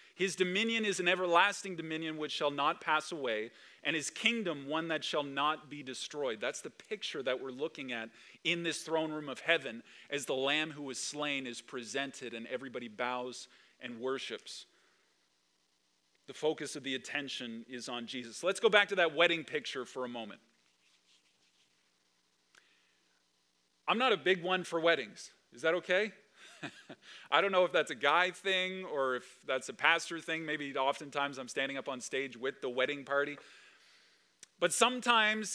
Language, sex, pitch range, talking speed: English, male, 130-180 Hz, 170 wpm